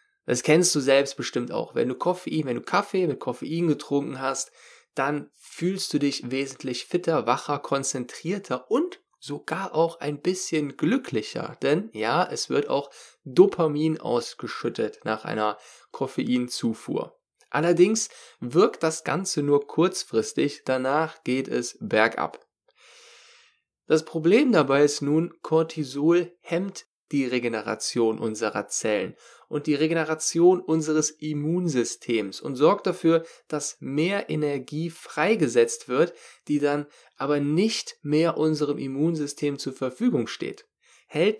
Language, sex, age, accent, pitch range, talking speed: German, male, 10-29, German, 140-175 Hz, 125 wpm